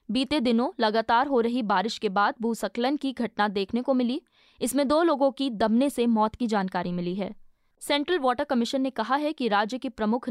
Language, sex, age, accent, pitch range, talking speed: Hindi, female, 20-39, native, 220-275 Hz, 205 wpm